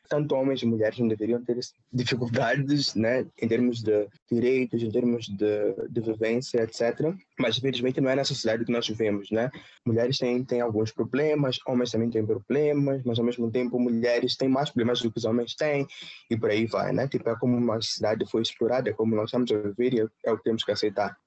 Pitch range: 115-140 Hz